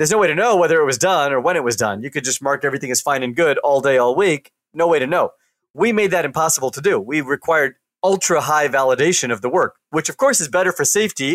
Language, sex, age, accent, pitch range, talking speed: English, male, 40-59, American, 140-190 Hz, 275 wpm